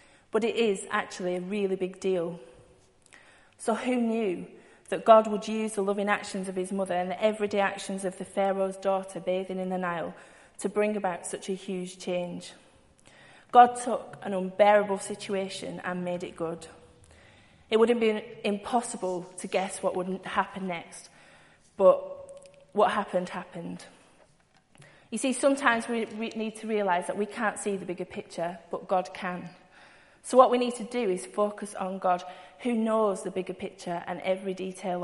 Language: English